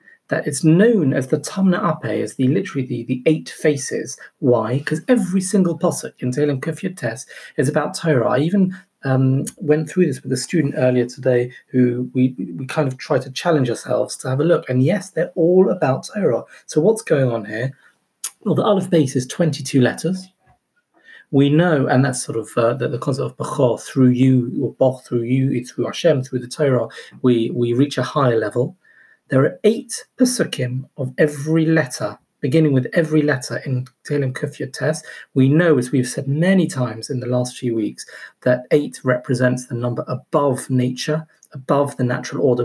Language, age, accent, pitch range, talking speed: English, 30-49, British, 125-160 Hz, 190 wpm